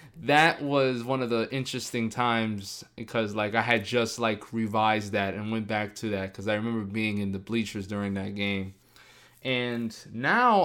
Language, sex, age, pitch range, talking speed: English, male, 20-39, 100-120 Hz, 180 wpm